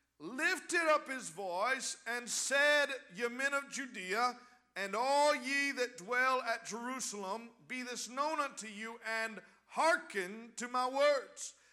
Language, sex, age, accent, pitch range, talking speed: English, male, 50-69, American, 220-275 Hz, 140 wpm